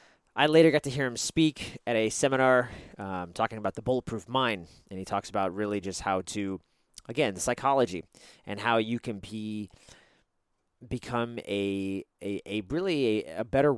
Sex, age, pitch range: male, 30-49, 105-140 Hz